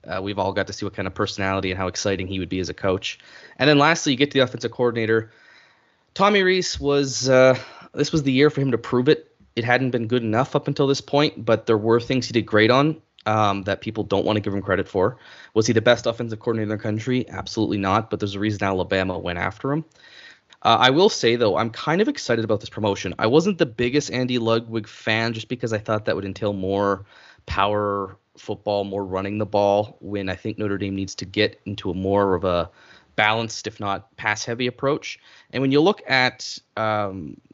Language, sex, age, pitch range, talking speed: English, male, 20-39, 100-120 Hz, 230 wpm